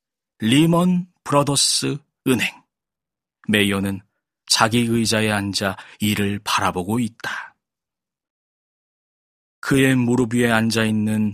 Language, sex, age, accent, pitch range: Korean, male, 40-59, native, 110-140 Hz